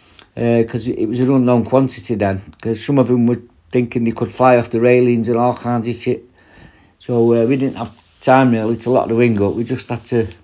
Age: 60-79